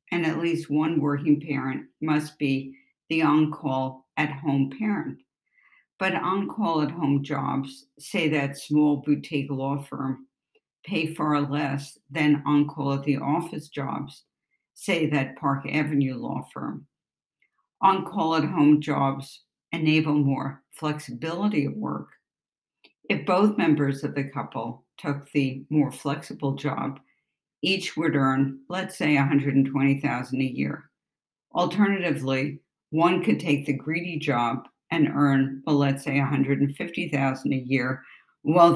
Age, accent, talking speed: 60-79, American, 130 wpm